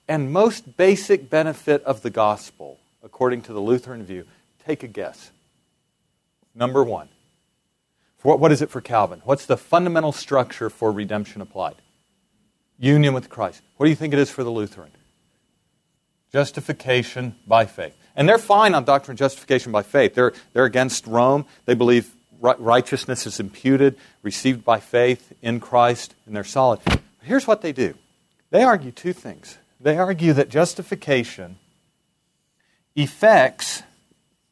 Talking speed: 150 wpm